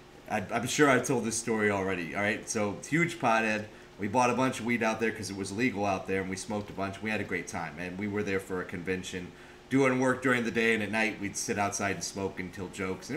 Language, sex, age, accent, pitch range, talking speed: English, male, 30-49, American, 100-120 Hz, 275 wpm